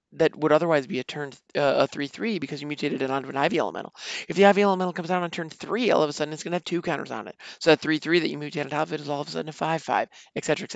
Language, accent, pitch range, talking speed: English, American, 145-180 Hz, 305 wpm